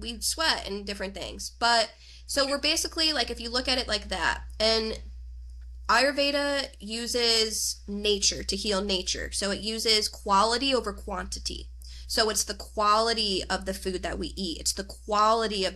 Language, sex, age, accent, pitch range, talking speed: English, female, 20-39, American, 185-225 Hz, 170 wpm